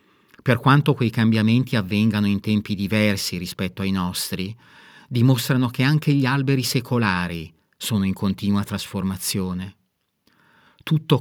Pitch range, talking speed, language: 100-125 Hz, 120 wpm, Italian